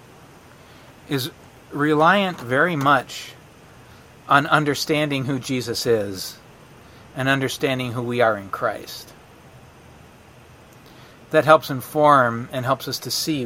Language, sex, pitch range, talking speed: English, male, 125-155 Hz, 105 wpm